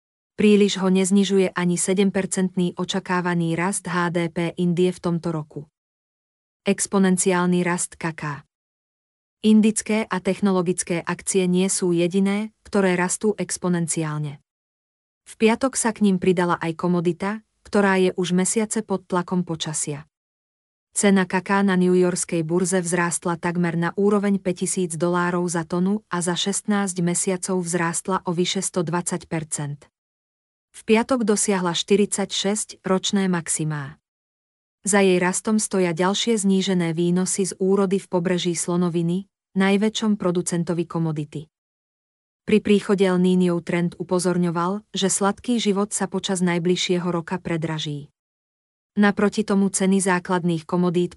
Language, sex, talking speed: Slovak, female, 115 wpm